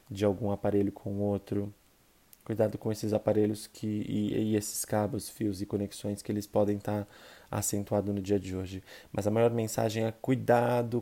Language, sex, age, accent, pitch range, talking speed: Portuguese, male, 20-39, Brazilian, 105-115 Hz, 170 wpm